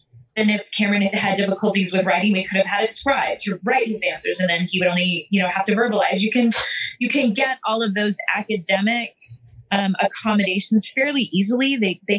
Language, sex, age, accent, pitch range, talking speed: English, female, 20-39, American, 180-215 Hz, 205 wpm